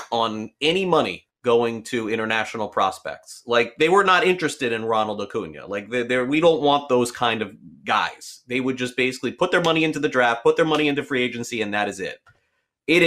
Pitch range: 115-190 Hz